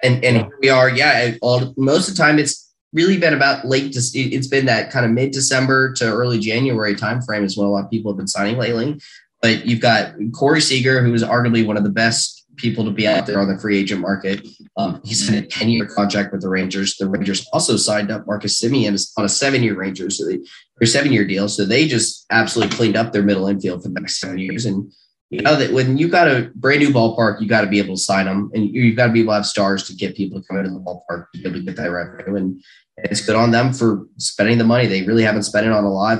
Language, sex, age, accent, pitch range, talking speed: English, male, 20-39, American, 100-125 Hz, 255 wpm